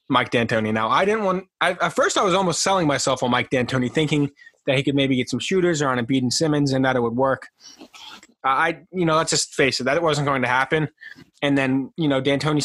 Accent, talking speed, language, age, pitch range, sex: American, 250 wpm, English, 20-39, 125-160 Hz, male